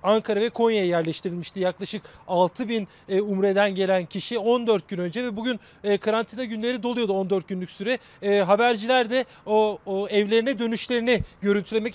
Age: 30-49